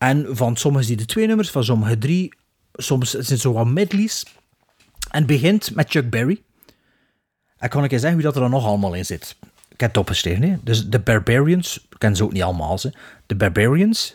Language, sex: Dutch, male